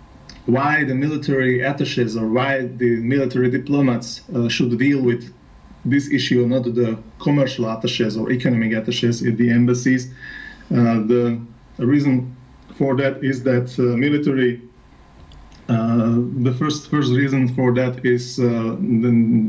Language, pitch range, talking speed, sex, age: Dutch, 115-130 Hz, 135 wpm, male, 30-49